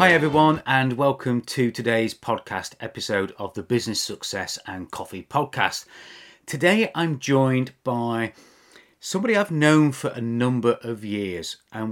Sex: male